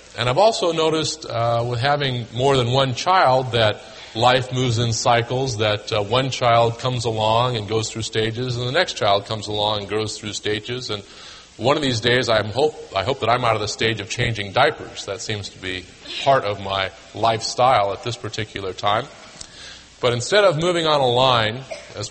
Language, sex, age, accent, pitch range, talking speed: English, male, 30-49, American, 110-135 Hz, 200 wpm